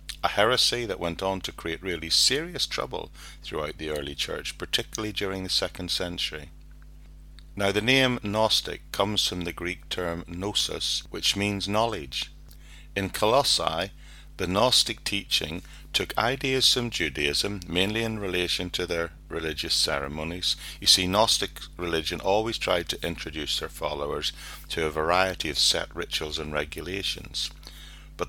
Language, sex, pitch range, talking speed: English, male, 75-95 Hz, 140 wpm